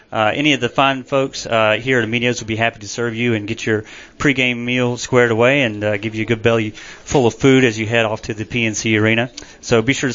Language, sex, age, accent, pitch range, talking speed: English, male, 30-49, American, 110-130 Hz, 265 wpm